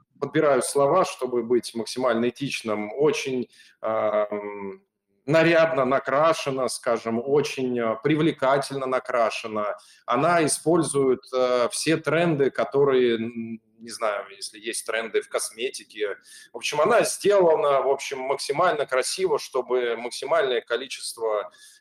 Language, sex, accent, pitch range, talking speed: Russian, male, native, 125-175 Hz, 105 wpm